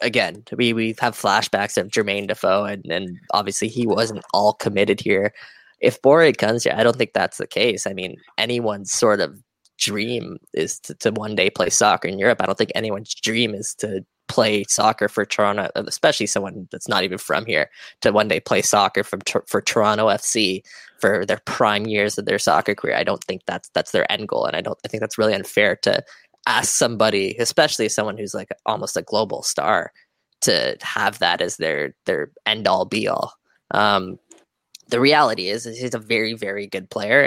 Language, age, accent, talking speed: English, 10-29, American, 195 wpm